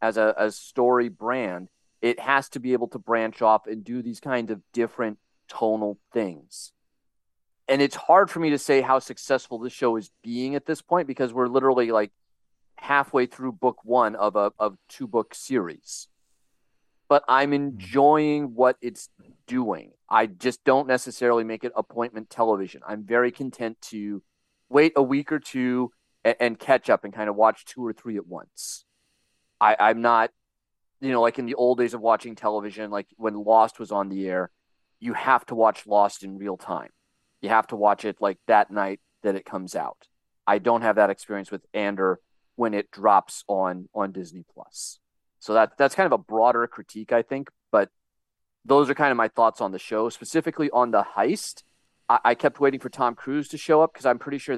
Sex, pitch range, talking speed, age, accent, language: male, 105-130 Hz, 195 wpm, 30-49, American, English